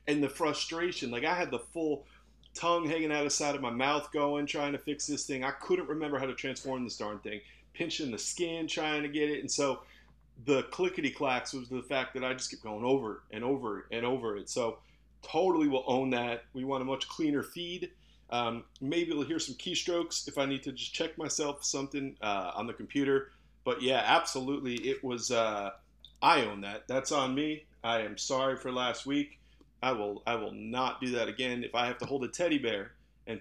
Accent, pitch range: American, 120-145 Hz